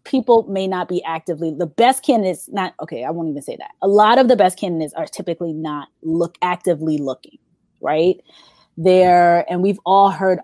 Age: 20-39